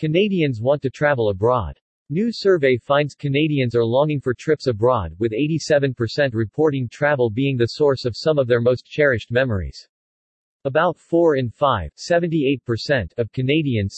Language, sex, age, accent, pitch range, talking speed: English, male, 40-59, American, 120-150 Hz, 150 wpm